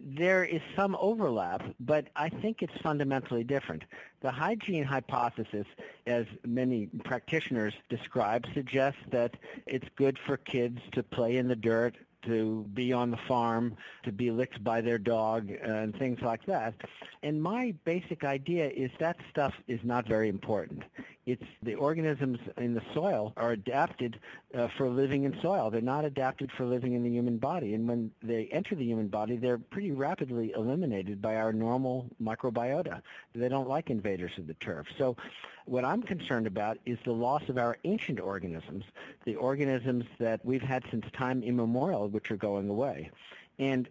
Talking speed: 170 wpm